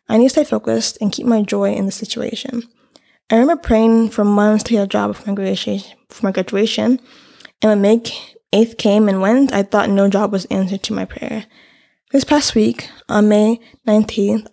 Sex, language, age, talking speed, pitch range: female, English, 10-29, 190 wpm, 200-250 Hz